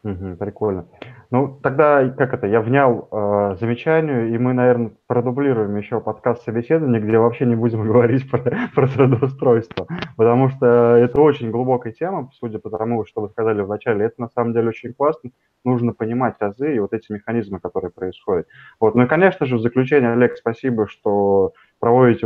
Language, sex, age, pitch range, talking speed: Russian, male, 20-39, 110-130 Hz, 165 wpm